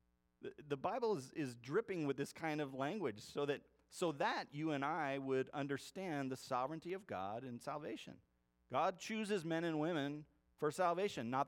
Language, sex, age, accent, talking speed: English, male, 40-59, American, 175 wpm